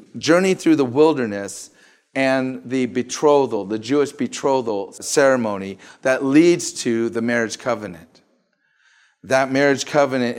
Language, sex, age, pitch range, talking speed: English, male, 40-59, 130-185 Hz, 115 wpm